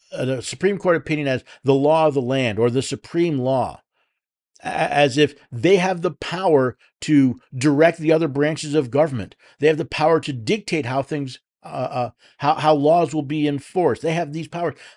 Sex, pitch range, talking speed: male, 140-185 Hz, 190 wpm